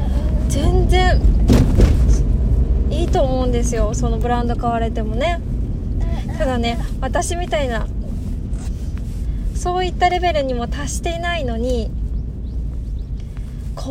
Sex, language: female, Japanese